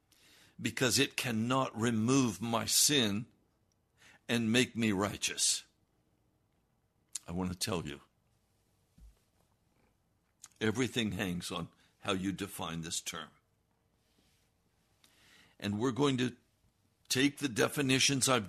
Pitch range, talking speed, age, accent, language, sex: 95-125 Hz, 100 wpm, 60-79, American, English, male